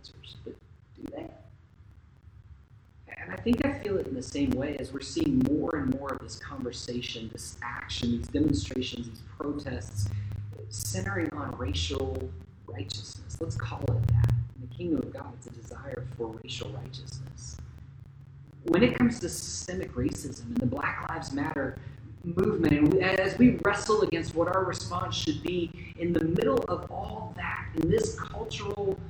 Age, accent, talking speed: 30-49, American, 160 wpm